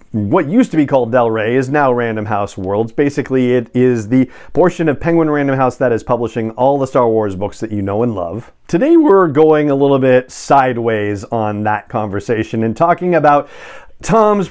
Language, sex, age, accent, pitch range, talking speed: English, male, 40-59, American, 120-160 Hz, 200 wpm